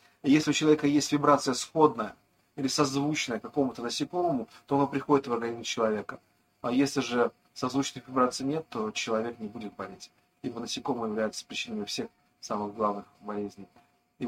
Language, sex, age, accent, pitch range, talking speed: Russian, male, 30-49, native, 120-145 Hz, 150 wpm